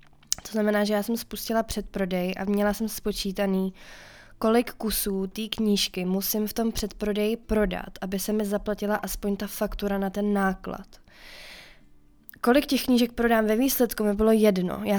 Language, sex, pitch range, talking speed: Czech, female, 185-210 Hz, 160 wpm